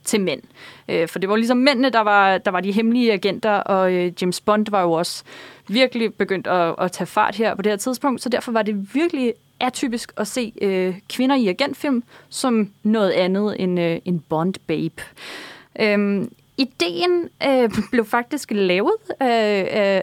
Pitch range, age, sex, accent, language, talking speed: 195-245 Hz, 20-39, female, native, Danish, 175 wpm